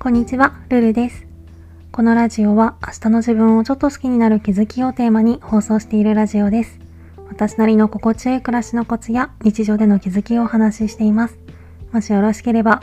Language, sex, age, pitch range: Japanese, female, 20-39, 190-235 Hz